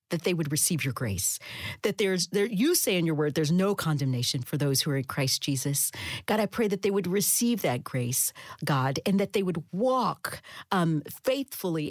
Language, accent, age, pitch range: English, American, 40-59, 150-230 Hz